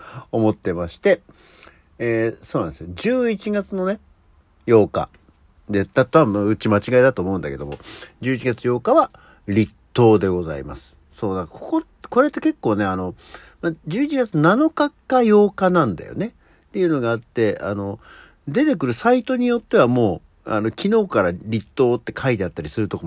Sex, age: male, 60-79